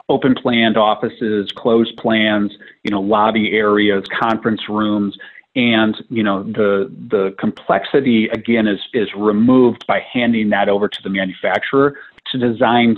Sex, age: male, 40-59